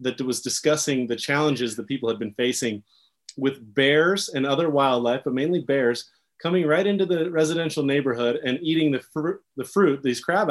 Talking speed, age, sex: 185 wpm, 30-49, male